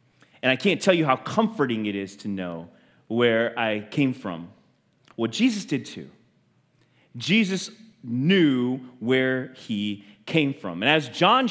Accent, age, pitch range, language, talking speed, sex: American, 30-49, 115-175 Hz, English, 145 wpm, male